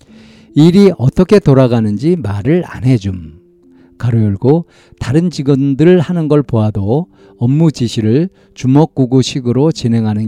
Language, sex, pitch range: Korean, male, 110-150 Hz